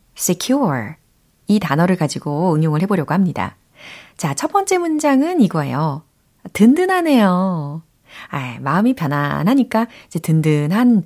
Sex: female